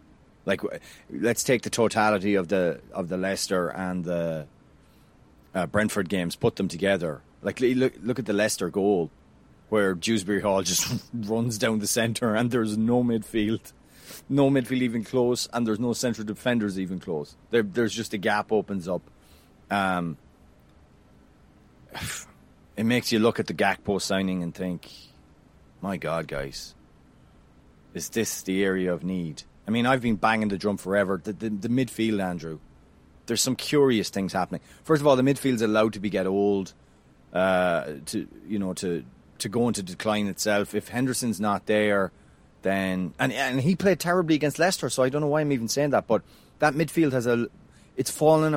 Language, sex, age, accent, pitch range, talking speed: English, male, 30-49, Irish, 90-120 Hz, 175 wpm